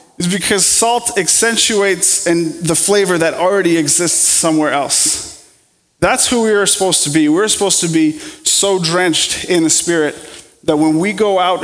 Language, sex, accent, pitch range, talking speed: English, male, American, 160-195 Hz, 165 wpm